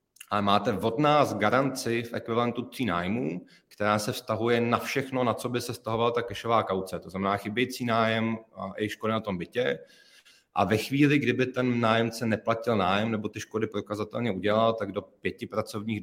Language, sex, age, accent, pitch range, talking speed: Czech, male, 30-49, native, 100-110 Hz, 185 wpm